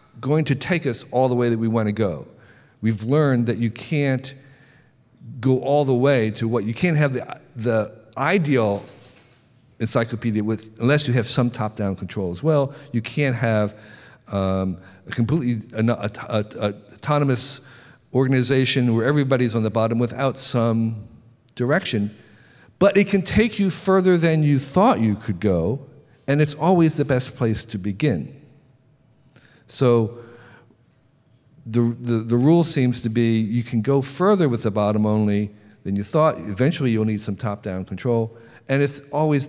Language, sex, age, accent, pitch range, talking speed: English, male, 50-69, American, 110-140 Hz, 160 wpm